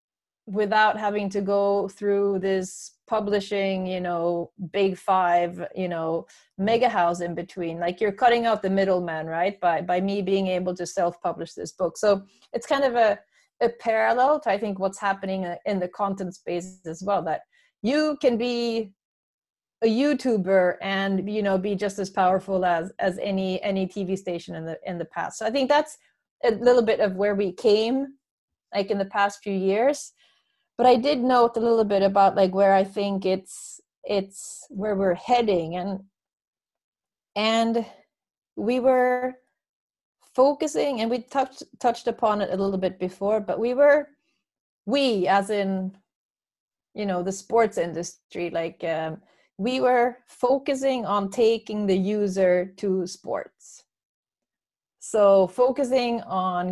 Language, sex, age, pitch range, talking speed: English, female, 30-49, 185-235 Hz, 160 wpm